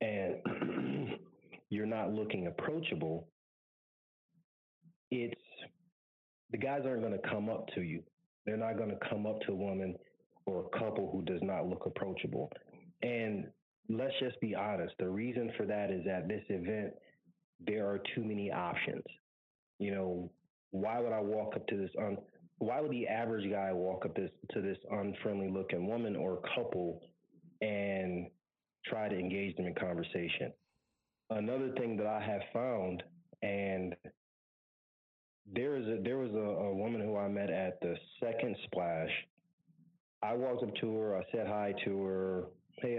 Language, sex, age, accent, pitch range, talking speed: English, male, 30-49, American, 95-115 Hz, 160 wpm